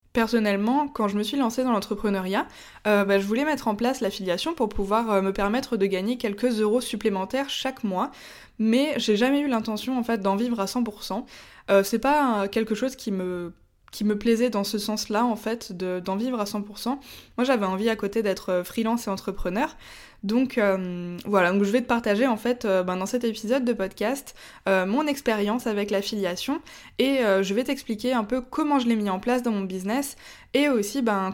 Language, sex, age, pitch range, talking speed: French, female, 20-39, 200-245 Hz, 210 wpm